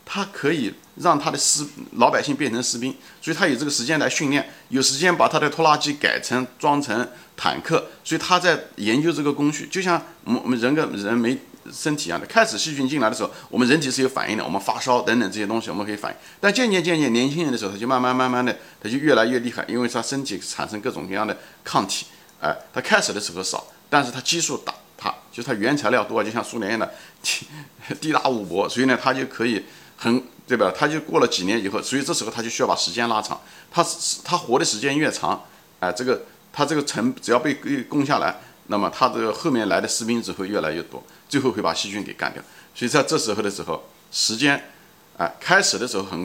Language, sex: Chinese, male